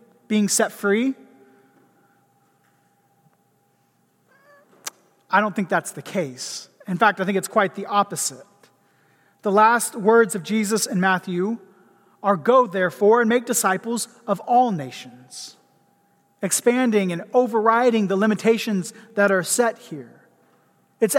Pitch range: 185-225 Hz